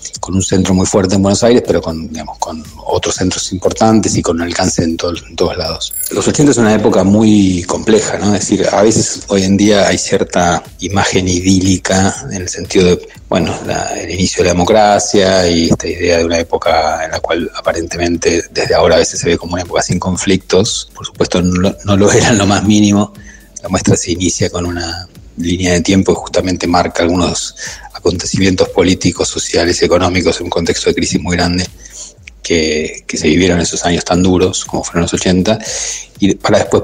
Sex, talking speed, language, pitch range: male, 195 wpm, Spanish, 85-100 Hz